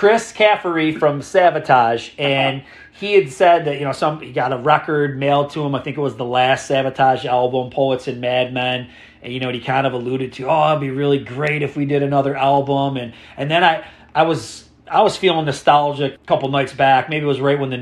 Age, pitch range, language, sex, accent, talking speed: 40-59, 135-180 Hz, English, male, American, 235 wpm